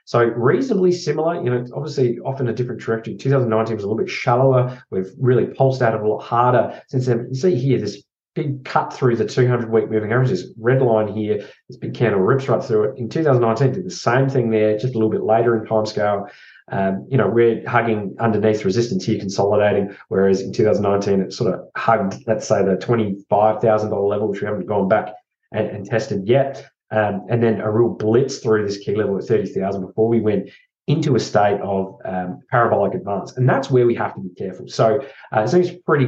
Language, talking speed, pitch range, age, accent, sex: English, 215 wpm, 105-125 Hz, 20-39, Australian, male